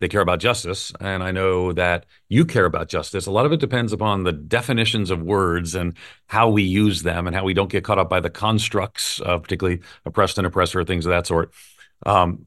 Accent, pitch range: American, 90-115 Hz